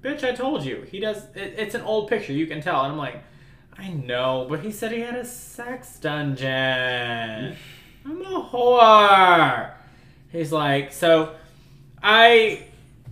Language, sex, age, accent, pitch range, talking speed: English, male, 20-39, American, 140-180 Hz, 150 wpm